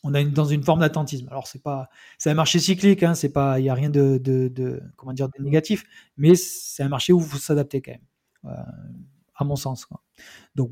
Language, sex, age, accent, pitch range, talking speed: French, male, 20-39, French, 135-170 Hz, 235 wpm